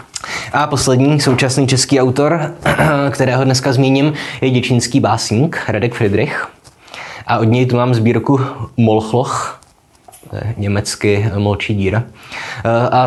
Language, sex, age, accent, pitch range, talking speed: Czech, male, 20-39, native, 100-120 Hz, 120 wpm